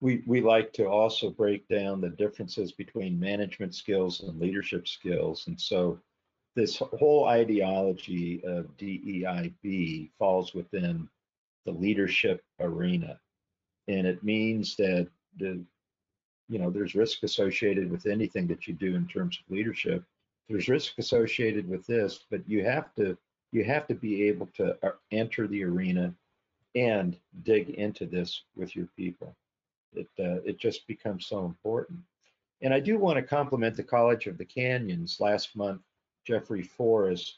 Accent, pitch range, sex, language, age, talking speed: American, 95-130 Hz, male, English, 50-69, 150 wpm